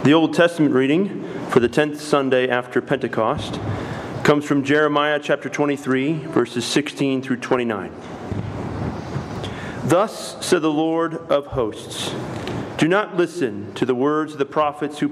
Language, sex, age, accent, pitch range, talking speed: English, male, 40-59, American, 130-165 Hz, 140 wpm